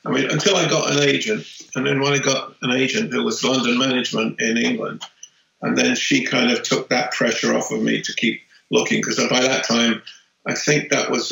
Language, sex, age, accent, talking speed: English, male, 50-69, British, 225 wpm